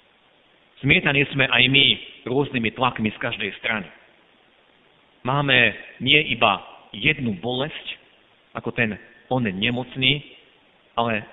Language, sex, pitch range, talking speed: Slovak, male, 125-175 Hz, 100 wpm